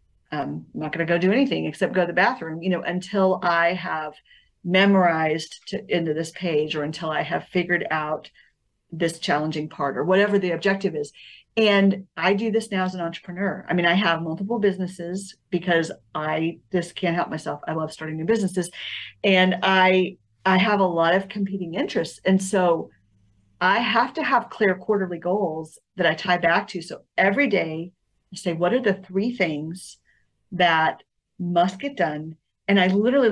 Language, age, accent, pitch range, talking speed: English, 40-59, American, 165-210 Hz, 185 wpm